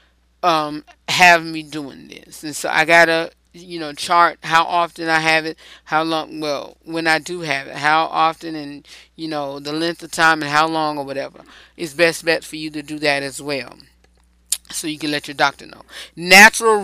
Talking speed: 205 wpm